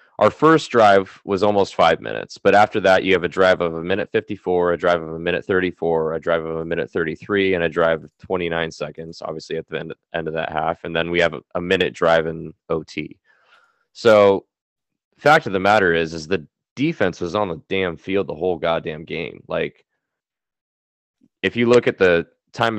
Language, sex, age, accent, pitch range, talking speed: English, male, 20-39, American, 80-100 Hz, 210 wpm